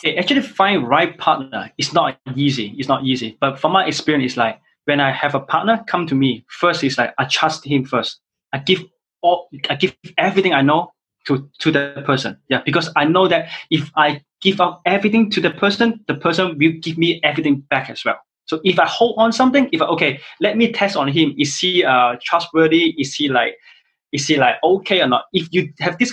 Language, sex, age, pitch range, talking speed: English, male, 20-39, 140-190 Hz, 225 wpm